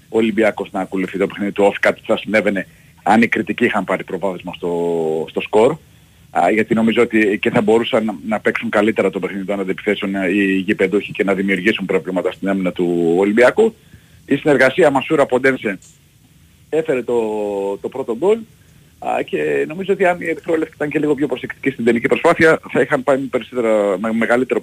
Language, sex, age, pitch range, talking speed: Greek, male, 40-59, 100-140 Hz, 175 wpm